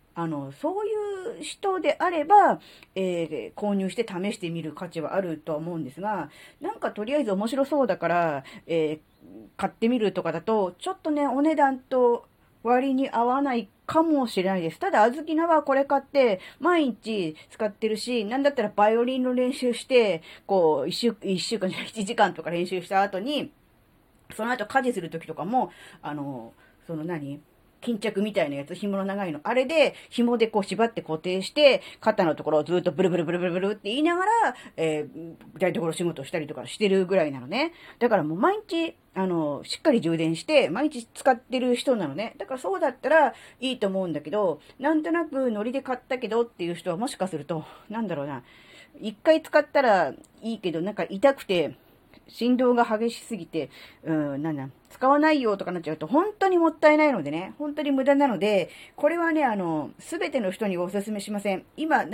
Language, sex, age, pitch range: Japanese, female, 40-59, 175-275 Hz